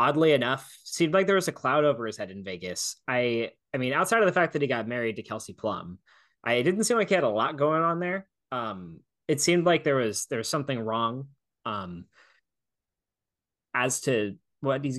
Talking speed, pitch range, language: 210 wpm, 115-165 Hz, English